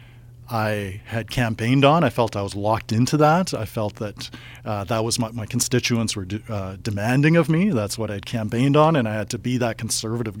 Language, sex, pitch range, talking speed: English, male, 110-130 Hz, 215 wpm